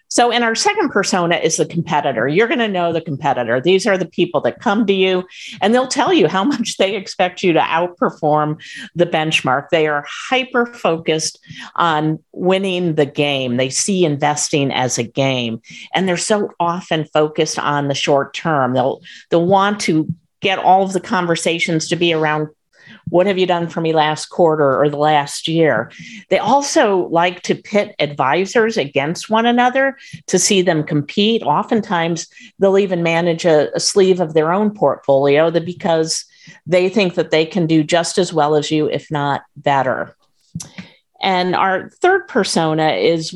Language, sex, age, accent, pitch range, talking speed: English, female, 50-69, American, 155-200 Hz, 175 wpm